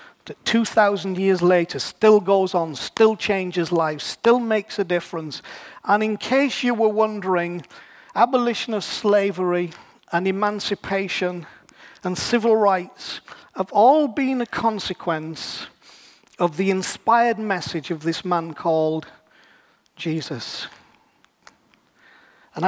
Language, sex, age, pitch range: English, male, 50-69, 170-220 Hz